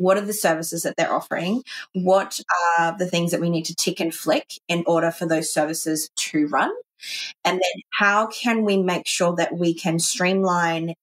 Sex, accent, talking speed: female, Australian, 195 wpm